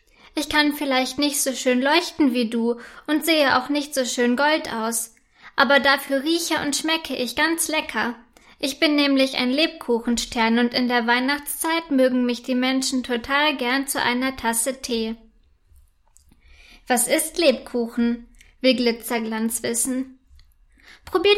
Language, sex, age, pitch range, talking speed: German, female, 20-39, 235-285 Hz, 145 wpm